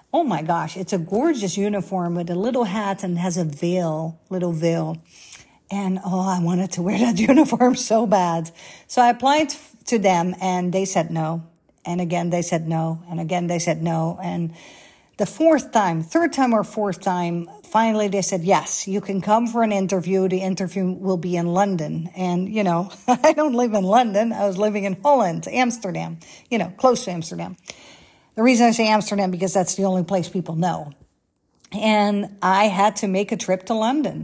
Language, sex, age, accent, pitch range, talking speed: English, female, 50-69, American, 180-220 Hz, 195 wpm